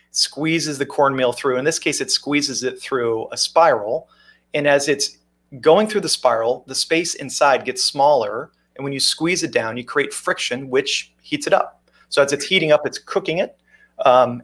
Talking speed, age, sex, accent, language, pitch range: 195 wpm, 30-49, male, American, English, 130-165 Hz